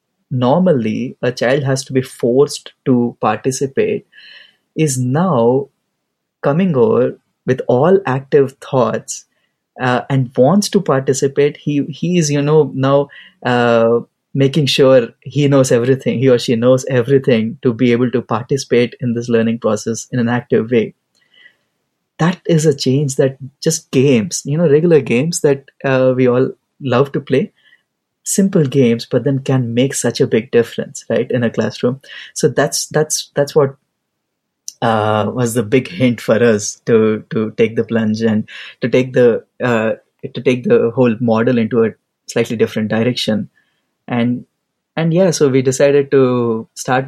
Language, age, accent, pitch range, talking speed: English, 20-39, Indian, 115-140 Hz, 160 wpm